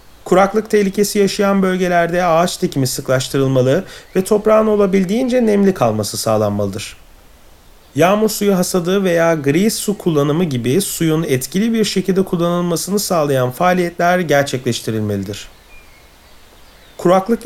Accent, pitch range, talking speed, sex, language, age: native, 160-205 Hz, 105 wpm, male, Turkish, 40-59